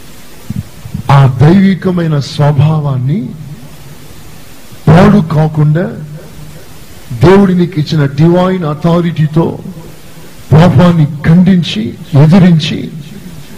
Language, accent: Telugu, native